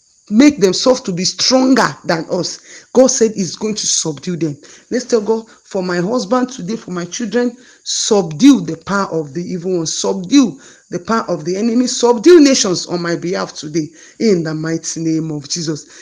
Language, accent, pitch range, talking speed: English, Nigerian, 175-250 Hz, 185 wpm